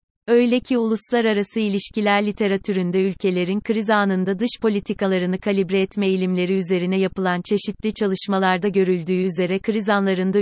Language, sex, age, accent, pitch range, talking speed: Turkish, female, 30-49, native, 190-215 Hz, 120 wpm